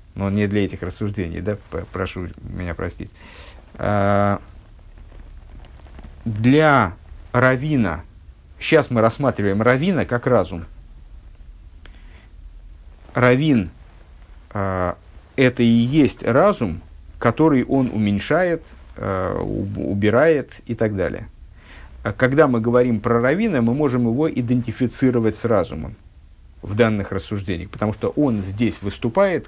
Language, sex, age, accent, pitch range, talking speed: Russian, male, 50-69, native, 90-120 Hz, 100 wpm